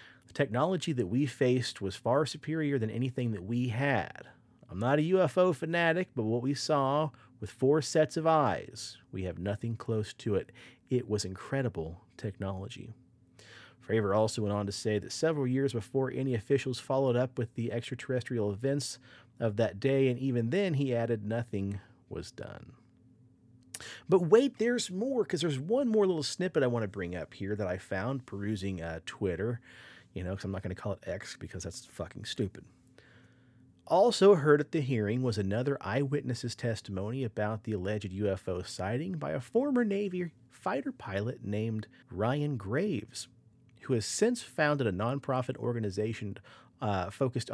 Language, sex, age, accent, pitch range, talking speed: English, male, 40-59, American, 105-140 Hz, 170 wpm